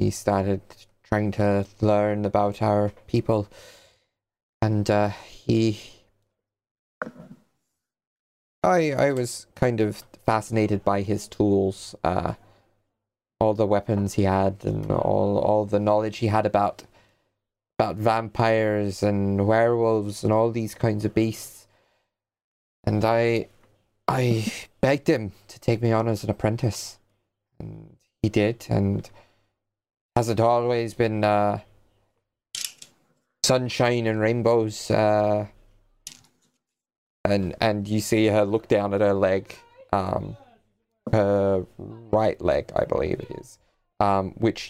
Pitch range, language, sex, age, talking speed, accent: 100-115 Hz, English, male, 20-39, 120 wpm, British